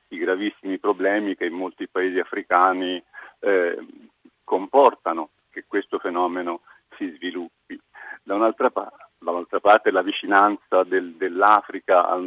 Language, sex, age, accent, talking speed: Italian, male, 50-69, native, 115 wpm